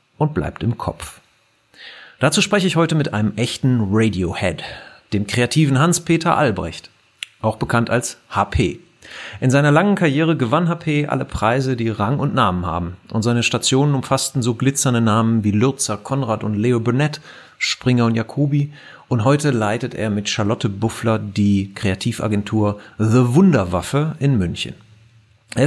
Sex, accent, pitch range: male, German, 105-145 Hz